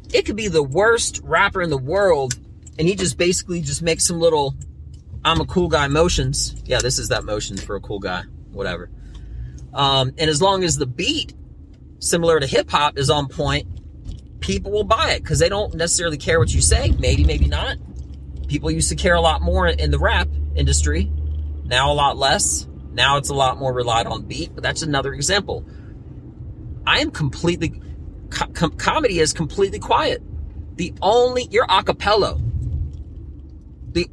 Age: 30-49